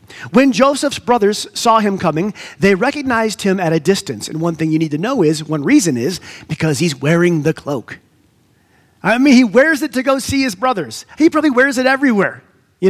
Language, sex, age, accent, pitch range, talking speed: English, male, 30-49, American, 140-215 Hz, 205 wpm